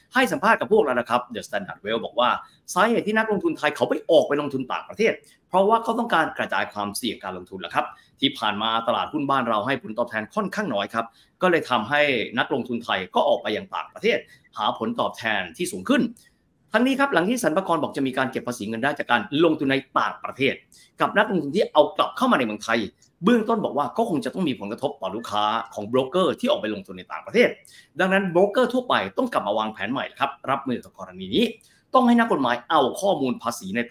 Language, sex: Thai, male